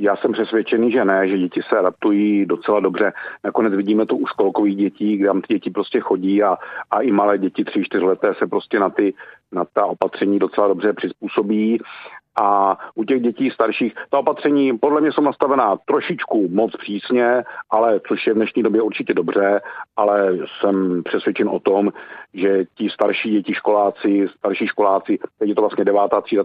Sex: male